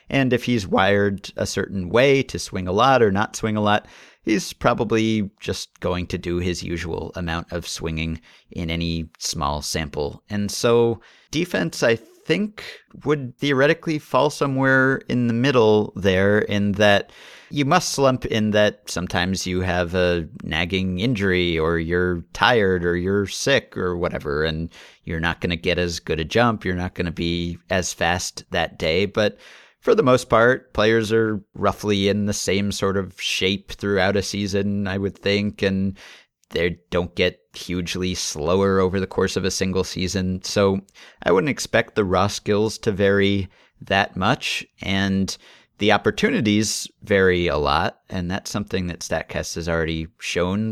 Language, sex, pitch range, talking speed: English, male, 90-105 Hz, 170 wpm